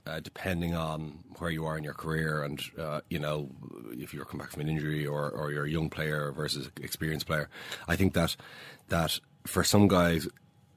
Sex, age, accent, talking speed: male, 30-49, Irish, 210 wpm